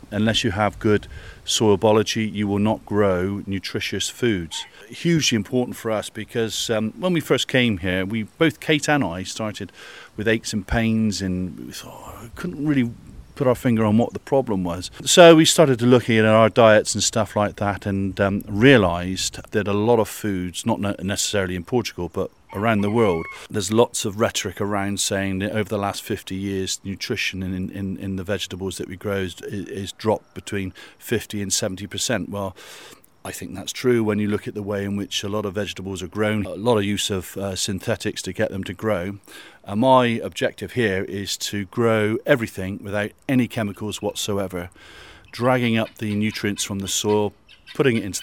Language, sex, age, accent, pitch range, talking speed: English, male, 40-59, British, 95-110 Hz, 195 wpm